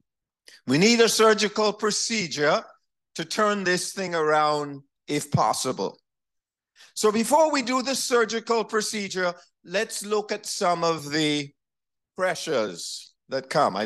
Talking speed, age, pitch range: 125 wpm, 50-69, 145-225 Hz